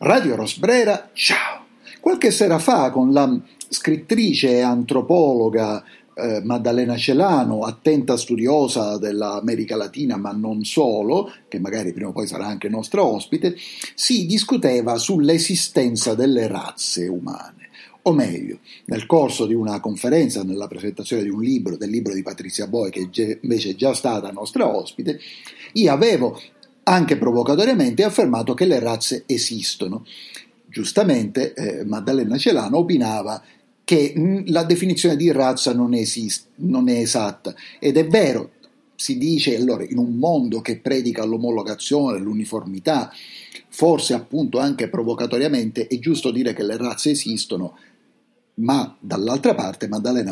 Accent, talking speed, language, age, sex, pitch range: native, 135 wpm, Italian, 50-69, male, 110-175 Hz